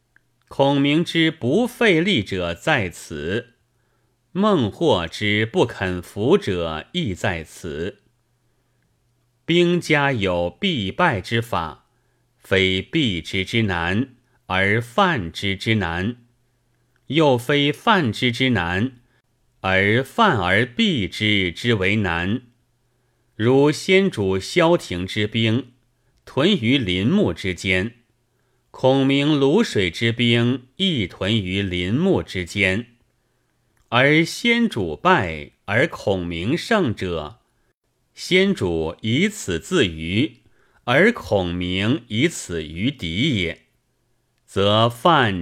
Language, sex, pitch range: Chinese, male, 100-135 Hz